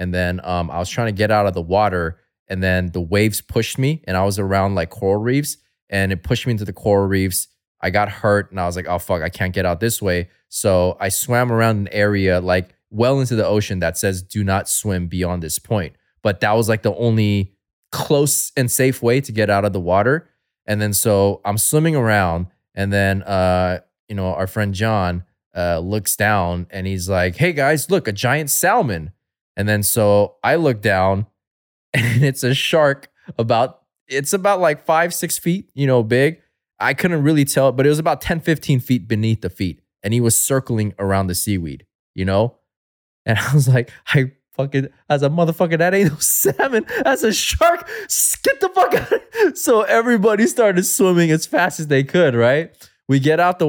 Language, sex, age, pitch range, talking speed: English, male, 20-39, 95-140 Hz, 210 wpm